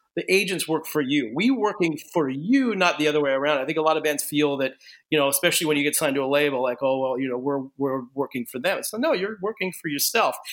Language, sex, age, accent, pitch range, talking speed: English, male, 30-49, American, 140-170 Hz, 275 wpm